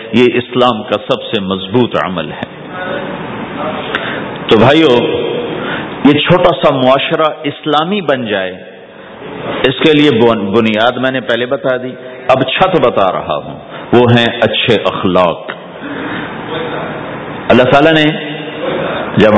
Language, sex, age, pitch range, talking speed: English, male, 50-69, 110-140 Hz, 120 wpm